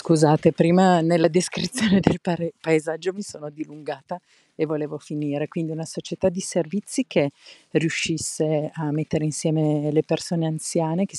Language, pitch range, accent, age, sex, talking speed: Italian, 150-175 Hz, native, 50-69, female, 140 wpm